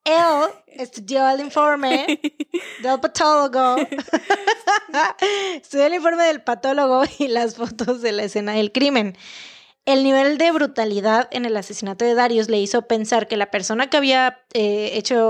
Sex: female